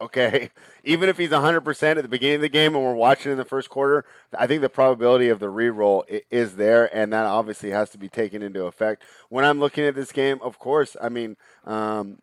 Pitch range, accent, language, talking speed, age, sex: 110-135 Hz, American, English, 230 wpm, 30-49, male